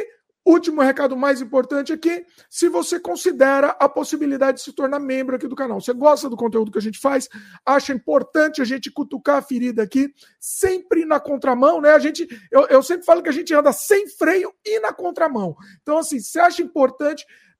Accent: Brazilian